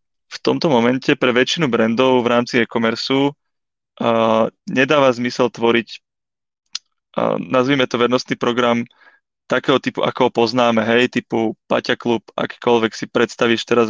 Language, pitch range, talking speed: Czech, 115-125 Hz, 135 wpm